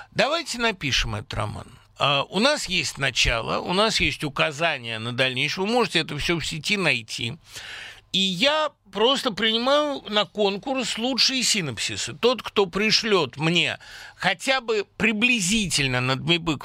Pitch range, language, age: 140-205 Hz, Russian, 50-69